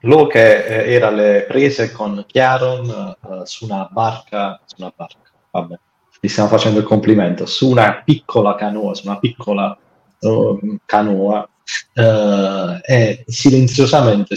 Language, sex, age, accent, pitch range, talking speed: Italian, male, 30-49, native, 100-115 Hz, 135 wpm